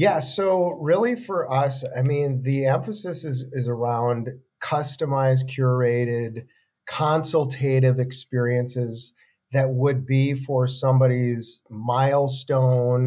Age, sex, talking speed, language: 40-59, male, 100 wpm, English